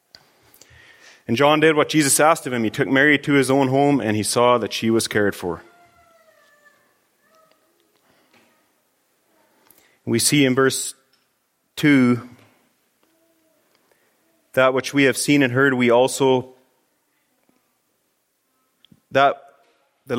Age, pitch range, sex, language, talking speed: 30-49, 120-150 Hz, male, English, 115 wpm